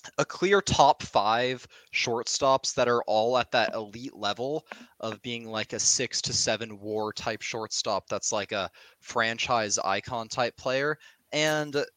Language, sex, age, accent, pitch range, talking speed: English, male, 20-39, American, 110-140 Hz, 150 wpm